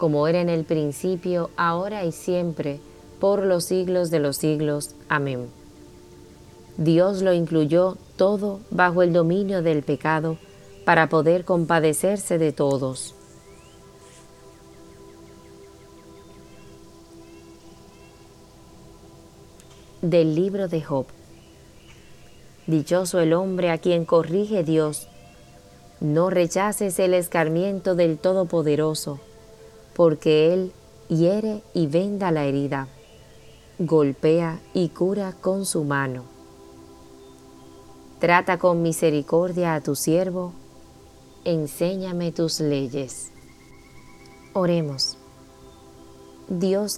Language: Spanish